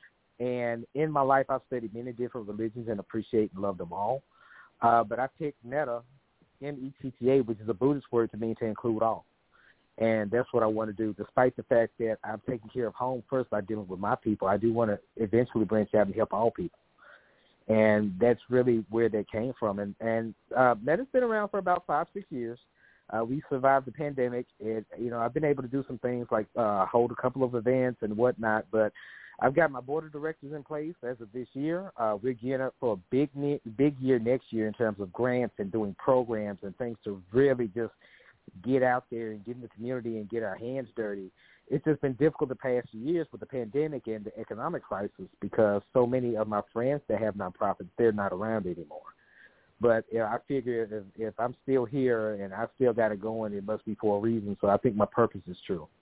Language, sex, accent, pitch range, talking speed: English, male, American, 110-130 Hz, 230 wpm